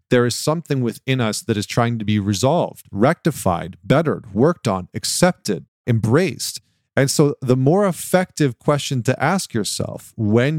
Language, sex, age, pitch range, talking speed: English, male, 40-59, 105-135 Hz, 155 wpm